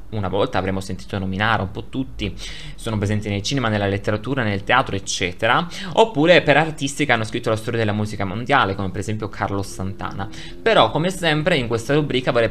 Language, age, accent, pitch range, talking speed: Italian, 20-39, native, 105-150 Hz, 190 wpm